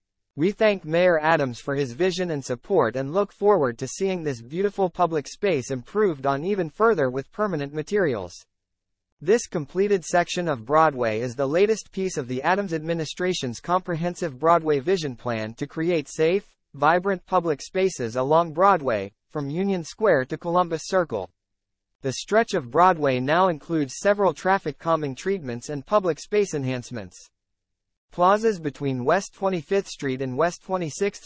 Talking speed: 150 wpm